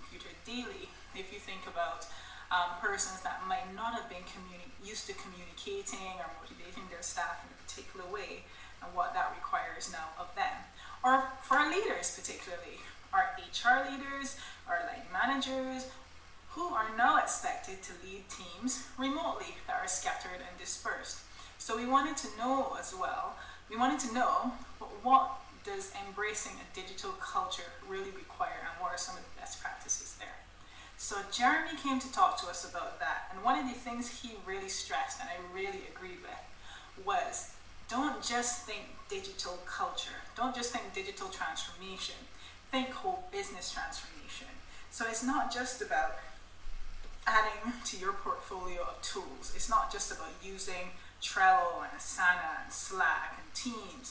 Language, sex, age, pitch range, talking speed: English, female, 20-39, 230-380 Hz, 160 wpm